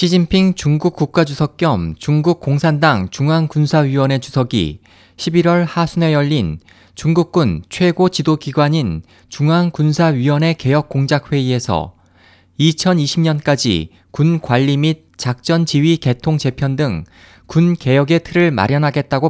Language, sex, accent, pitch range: Korean, male, native, 115-165 Hz